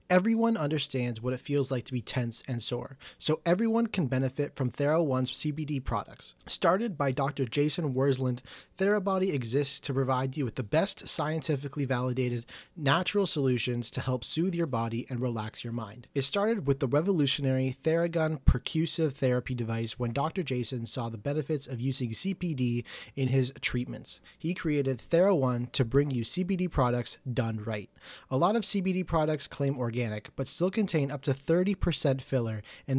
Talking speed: 165 wpm